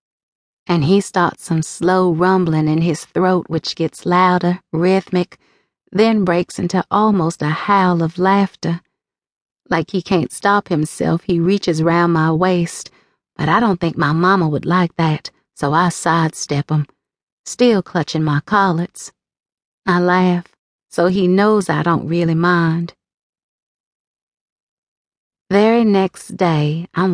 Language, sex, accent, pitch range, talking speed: English, female, American, 165-200 Hz, 135 wpm